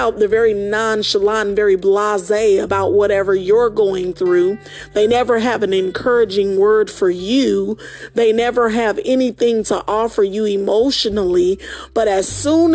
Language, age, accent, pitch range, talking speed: English, 40-59, American, 210-285 Hz, 140 wpm